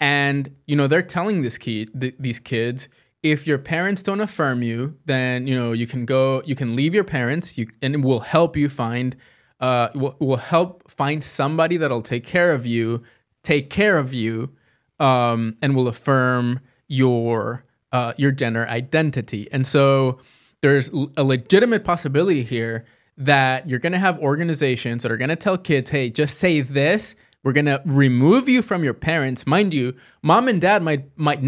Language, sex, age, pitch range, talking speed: English, male, 20-39, 130-175 Hz, 185 wpm